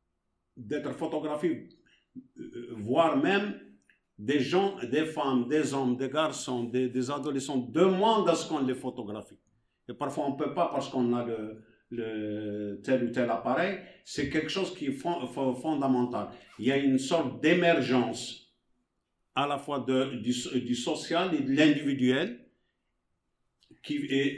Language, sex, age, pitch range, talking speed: English, male, 50-69, 125-155 Hz, 150 wpm